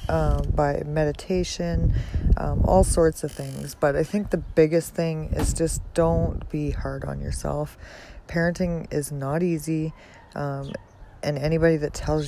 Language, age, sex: English, 20-39, female